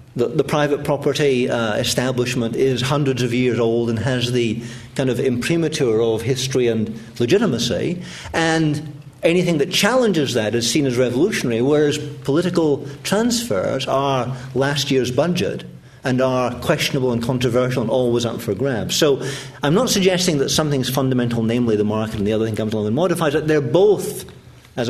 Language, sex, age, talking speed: English, male, 50-69, 165 wpm